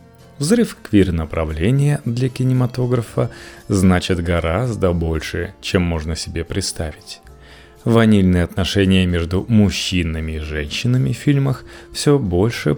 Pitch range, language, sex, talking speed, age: 85-115 Hz, Russian, male, 100 wpm, 30-49